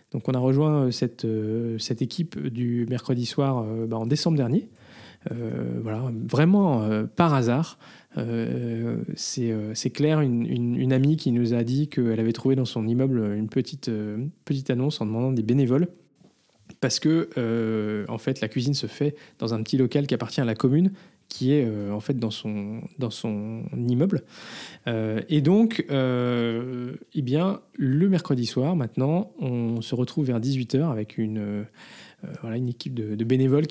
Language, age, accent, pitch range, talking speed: French, 20-39, French, 115-145 Hz, 185 wpm